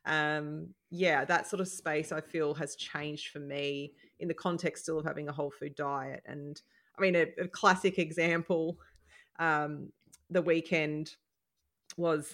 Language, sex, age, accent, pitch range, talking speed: English, female, 30-49, Australian, 150-170 Hz, 160 wpm